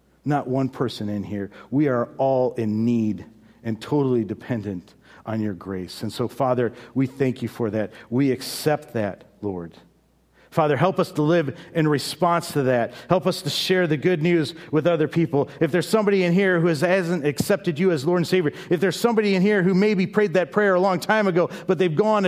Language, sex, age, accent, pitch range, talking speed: English, male, 50-69, American, 115-165 Hz, 205 wpm